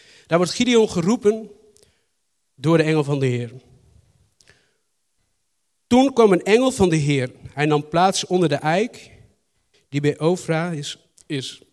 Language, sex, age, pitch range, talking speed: Dutch, male, 50-69, 140-185 Hz, 145 wpm